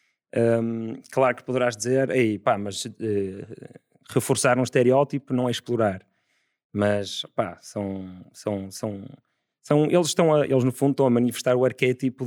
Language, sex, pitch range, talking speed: Portuguese, male, 110-130 Hz, 155 wpm